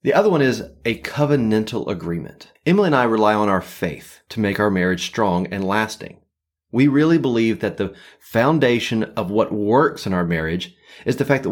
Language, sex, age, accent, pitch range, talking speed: English, male, 30-49, American, 100-140 Hz, 195 wpm